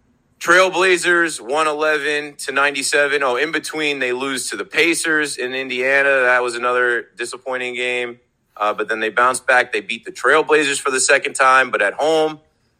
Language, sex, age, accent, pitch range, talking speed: English, male, 30-49, American, 125-150 Hz, 170 wpm